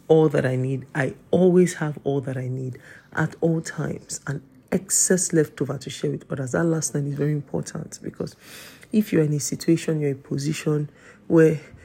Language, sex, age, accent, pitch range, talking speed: English, male, 40-59, Nigerian, 130-155 Hz, 190 wpm